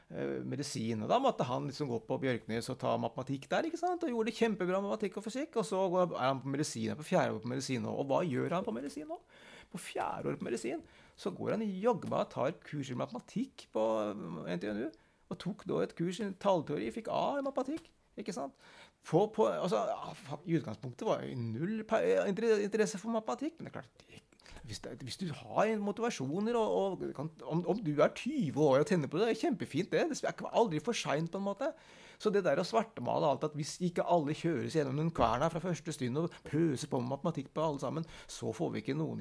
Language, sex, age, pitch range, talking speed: English, male, 30-49, 135-205 Hz, 225 wpm